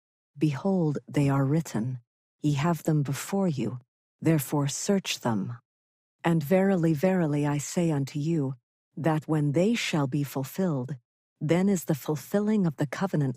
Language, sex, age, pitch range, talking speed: English, female, 50-69, 135-165 Hz, 145 wpm